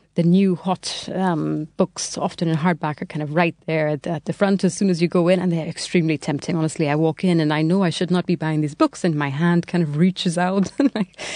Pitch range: 160-200 Hz